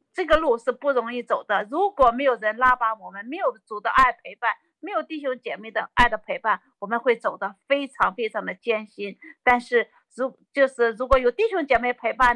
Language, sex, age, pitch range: Chinese, female, 50-69, 225-285 Hz